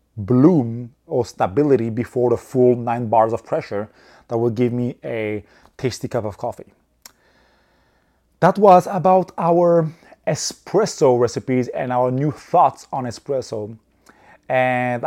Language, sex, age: English, male, 30-49